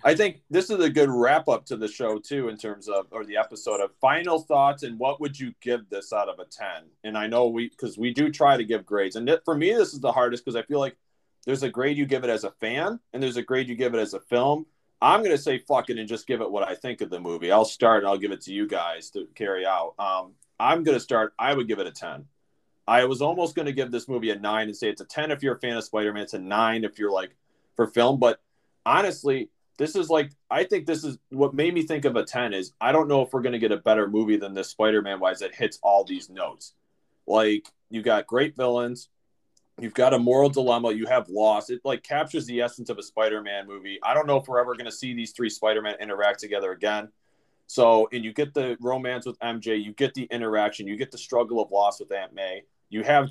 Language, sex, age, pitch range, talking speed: English, male, 30-49, 105-135 Hz, 265 wpm